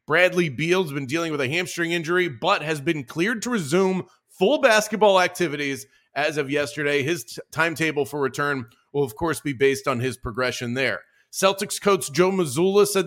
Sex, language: male, English